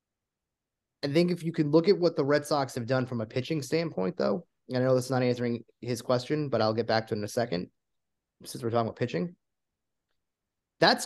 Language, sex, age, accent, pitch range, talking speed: English, male, 20-39, American, 115-135 Hz, 230 wpm